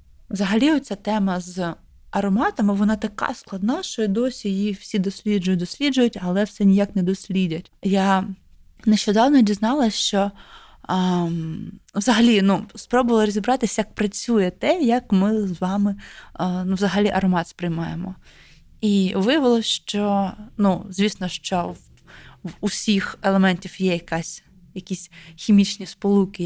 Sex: female